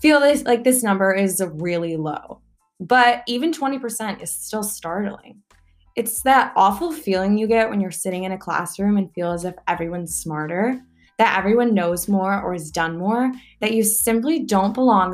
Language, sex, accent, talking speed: English, female, American, 180 wpm